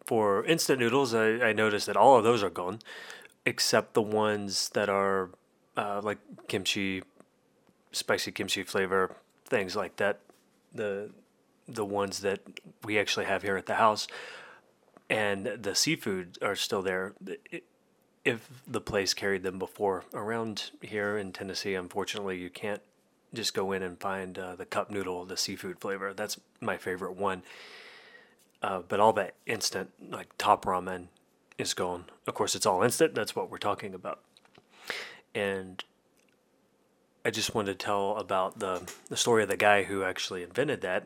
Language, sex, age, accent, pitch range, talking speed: English, male, 30-49, American, 95-105 Hz, 160 wpm